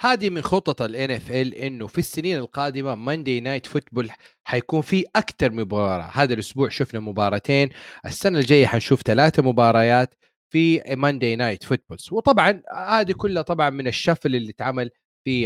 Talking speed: 150 wpm